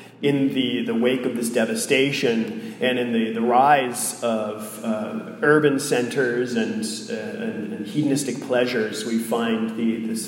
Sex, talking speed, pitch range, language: male, 145 wpm, 120-150 Hz, English